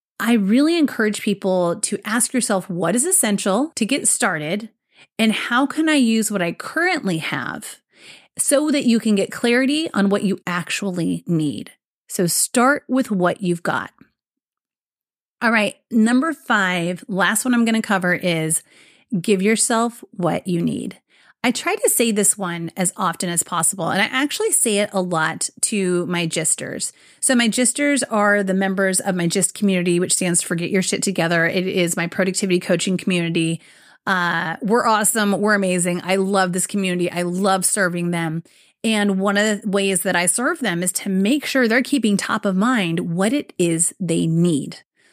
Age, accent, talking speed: 30-49, American, 180 wpm